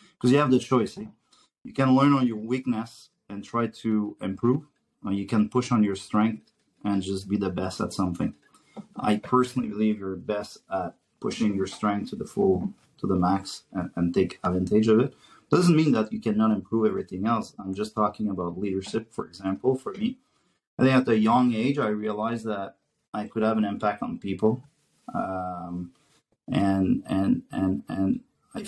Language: English